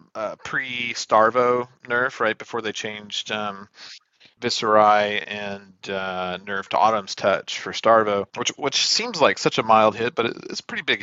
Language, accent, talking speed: English, American, 165 wpm